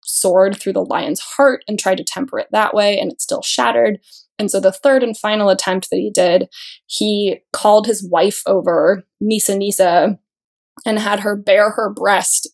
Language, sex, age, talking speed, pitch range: English, female, 20-39, 185 wpm, 195-250 Hz